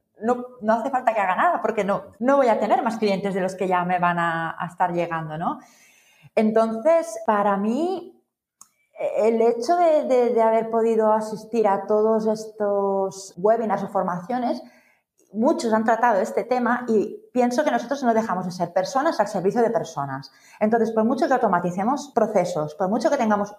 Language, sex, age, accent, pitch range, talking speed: Spanish, female, 30-49, Spanish, 180-240 Hz, 180 wpm